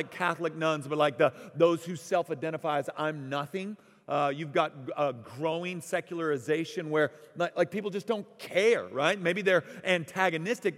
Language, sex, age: English, male, 40-59